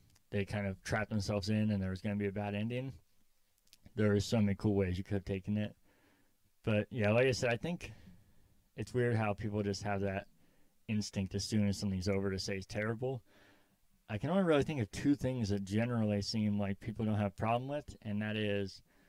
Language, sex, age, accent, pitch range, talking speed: English, male, 30-49, American, 100-110 Hz, 225 wpm